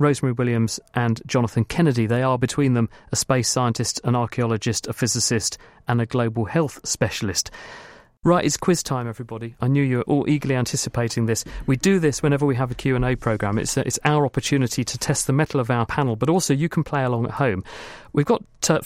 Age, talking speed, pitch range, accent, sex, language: 40-59, 210 wpm, 120-145 Hz, British, male, English